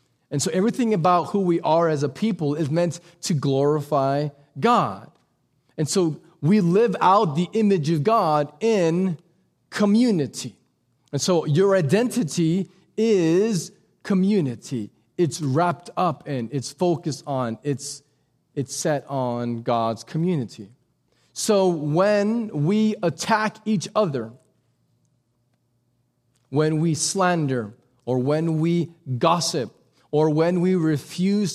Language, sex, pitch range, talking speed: English, male, 125-180 Hz, 120 wpm